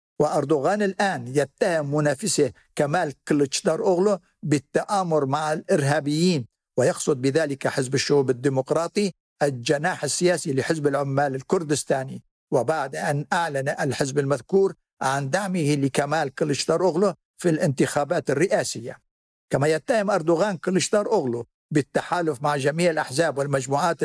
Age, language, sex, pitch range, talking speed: 60-79, Arabic, male, 140-175 Hz, 105 wpm